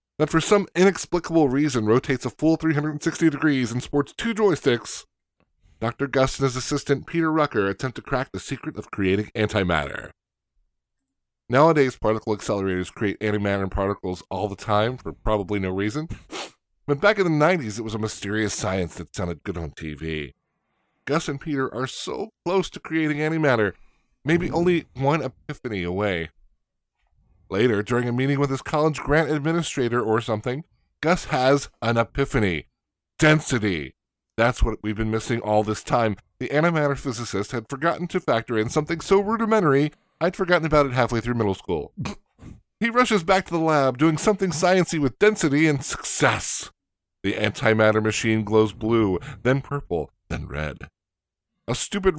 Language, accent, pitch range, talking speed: English, American, 105-160 Hz, 160 wpm